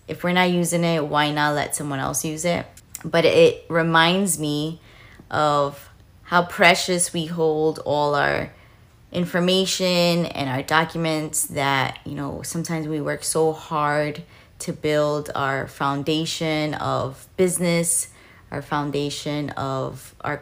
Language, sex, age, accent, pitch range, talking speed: English, female, 20-39, American, 145-170 Hz, 130 wpm